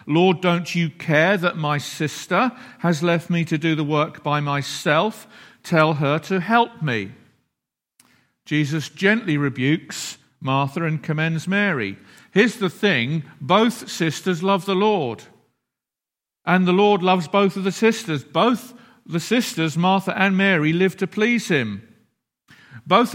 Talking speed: 145 wpm